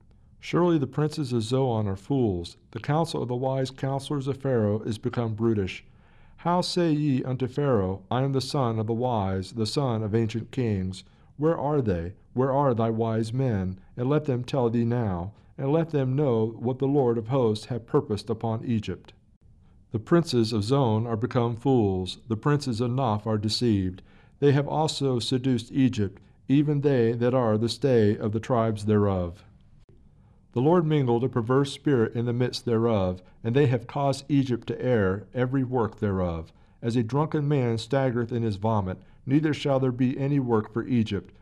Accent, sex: American, male